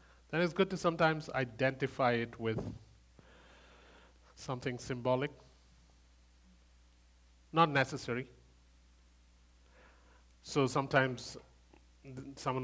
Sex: male